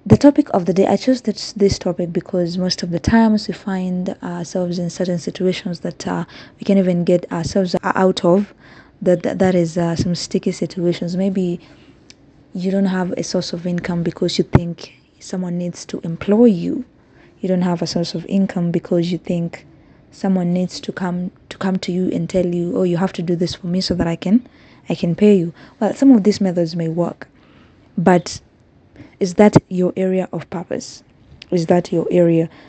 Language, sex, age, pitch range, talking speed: English, female, 20-39, 175-195 Hz, 200 wpm